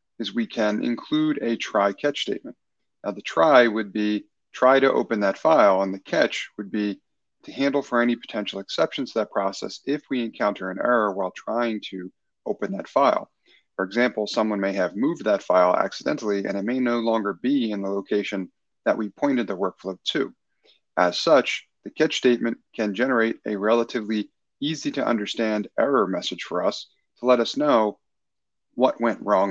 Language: English